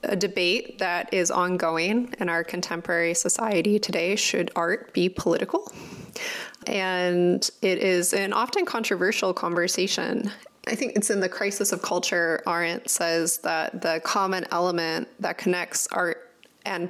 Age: 20-39